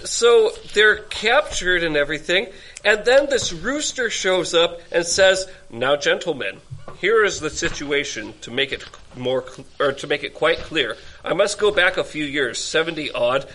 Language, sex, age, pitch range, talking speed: English, male, 40-59, 145-205 Hz, 175 wpm